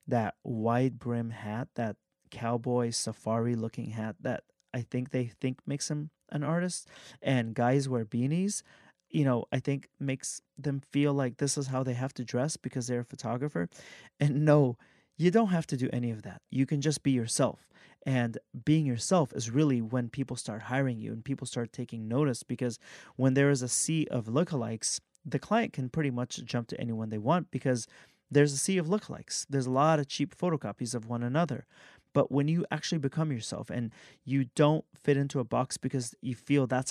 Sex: male